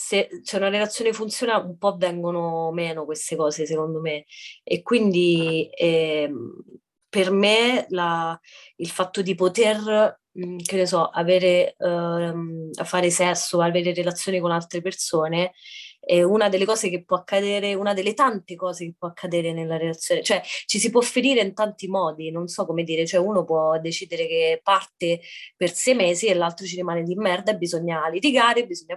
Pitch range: 175-225 Hz